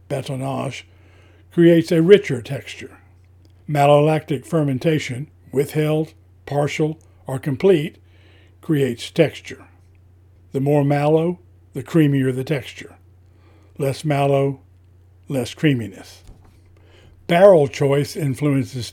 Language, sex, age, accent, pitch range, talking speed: English, male, 60-79, American, 90-150 Hz, 85 wpm